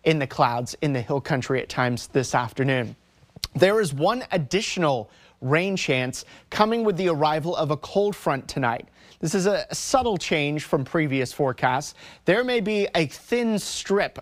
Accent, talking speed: American, 170 wpm